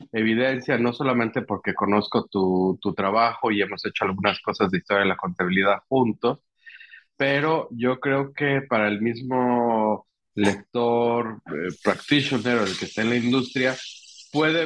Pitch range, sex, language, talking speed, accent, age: 100-130 Hz, male, Spanish, 145 wpm, Mexican, 40-59